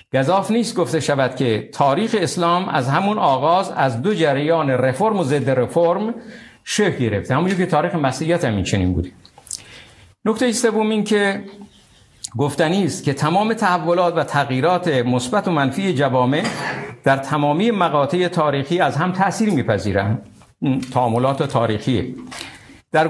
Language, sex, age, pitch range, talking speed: Persian, male, 50-69, 130-185 Hz, 125 wpm